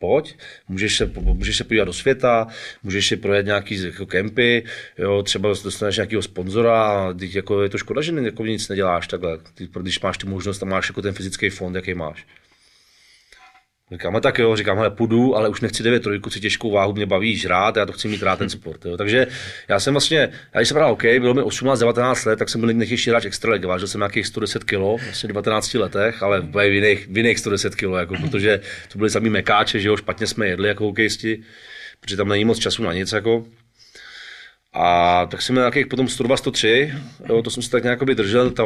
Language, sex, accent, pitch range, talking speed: Czech, male, native, 100-120 Hz, 220 wpm